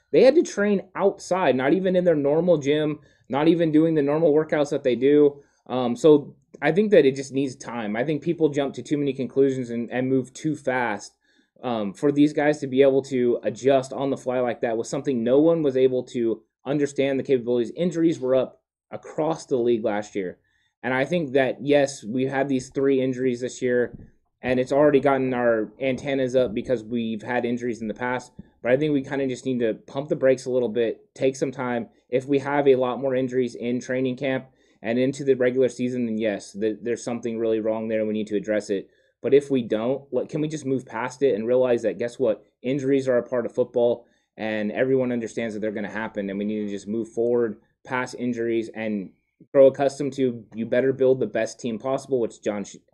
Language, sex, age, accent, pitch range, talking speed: English, male, 20-39, American, 115-140 Hz, 225 wpm